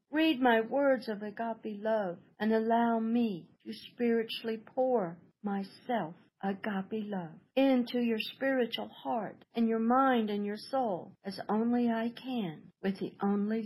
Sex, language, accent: female, English, American